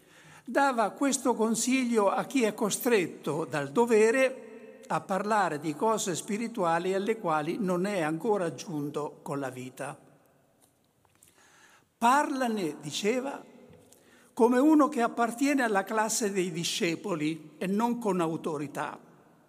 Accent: native